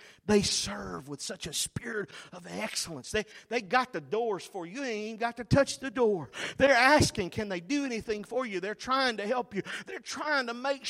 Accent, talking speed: American, 215 wpm